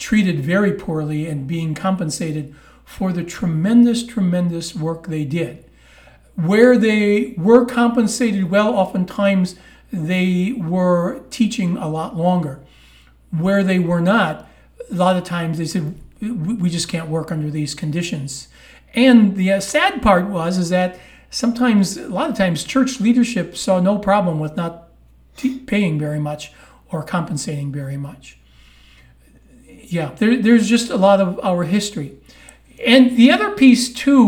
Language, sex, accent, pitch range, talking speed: English, male, American, 160-215 Hz, 140 wpm